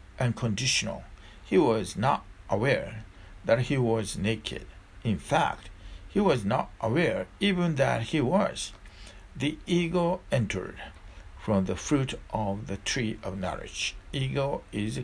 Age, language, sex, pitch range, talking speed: 60-79, English, male, 95-125 Hz, 130 wpm